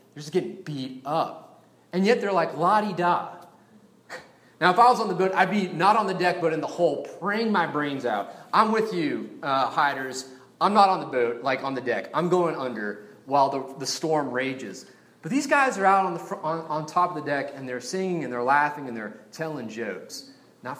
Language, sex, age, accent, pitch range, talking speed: English, male, 30-49, American, 125-175 Hz, 225 wpm